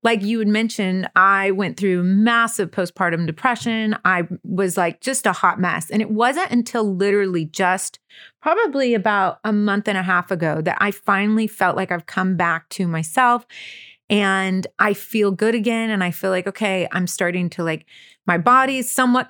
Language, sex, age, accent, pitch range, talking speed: English, female, 30-49, American, 185-230 Hz, 185 wpm